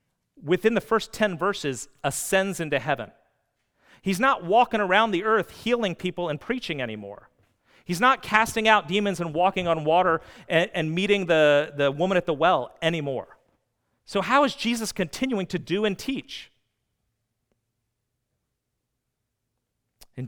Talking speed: 140 wpm